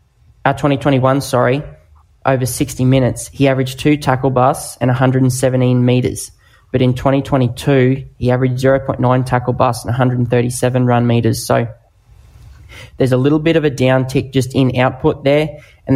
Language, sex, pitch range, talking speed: English, male, 120-130 Hz, 145 wpm